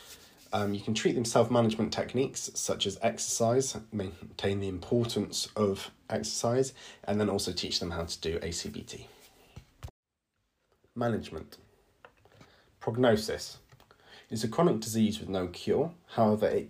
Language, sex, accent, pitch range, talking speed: English, male, British, 95-115 Hz, 125 wpm